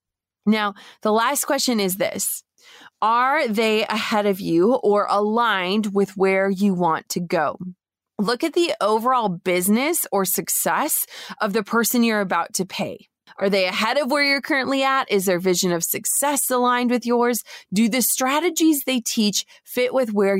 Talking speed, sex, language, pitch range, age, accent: 170 wpm, female, English, 195-245 Hz, 20-39, American